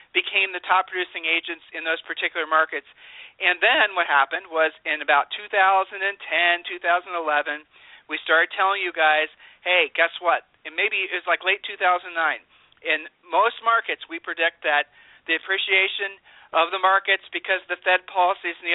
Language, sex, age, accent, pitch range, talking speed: English, male, 40-59, American, 160-195 Hz, 160 wpm